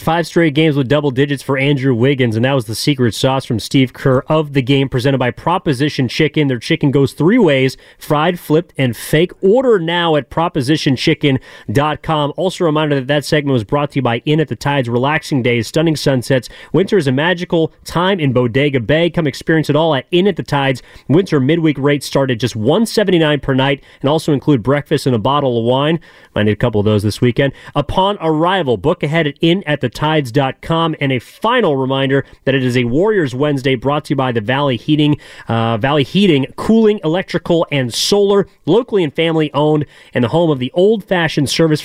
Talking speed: 210 wpm